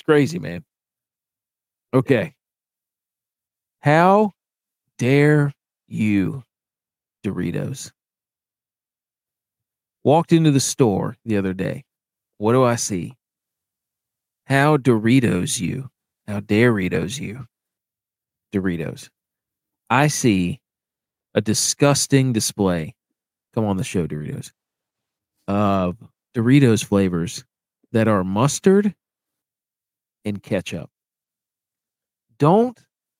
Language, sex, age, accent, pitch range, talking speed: English, male, 40-59, American, 105-145 Hz, 80 wpm